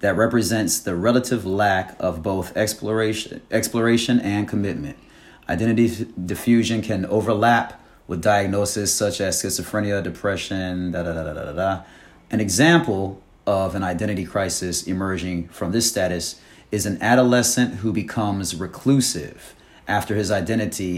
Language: Japanese